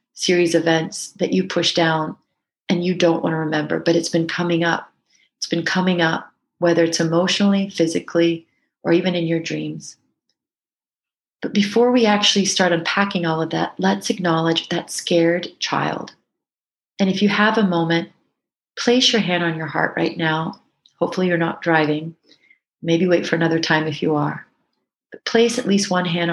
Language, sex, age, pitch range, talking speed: English, female, 40-59, 165-190 Hz, 175 wpm